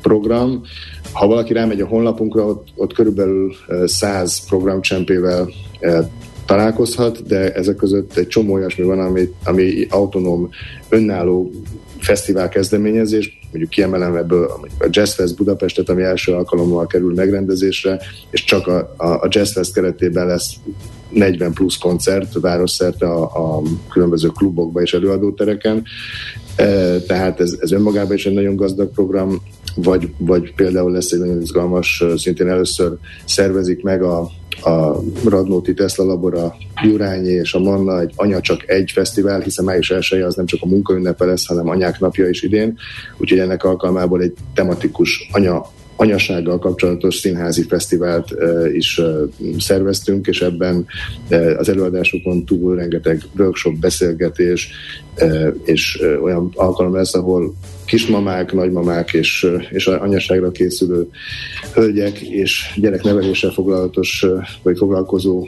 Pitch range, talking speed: 90-100 Hz, 125 wpm